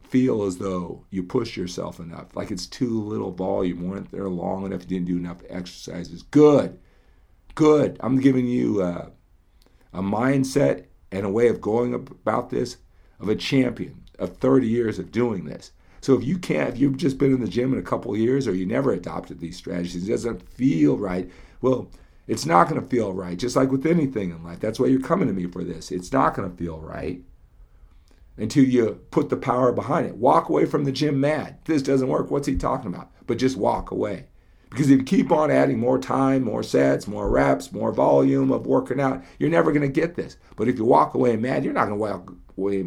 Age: 50-69